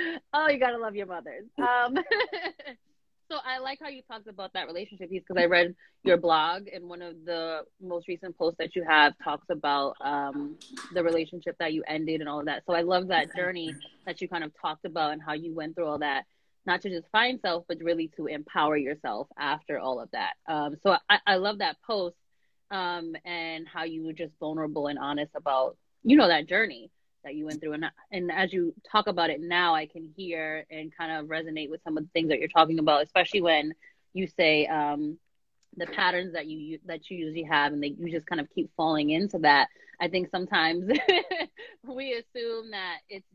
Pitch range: 155-190 Hz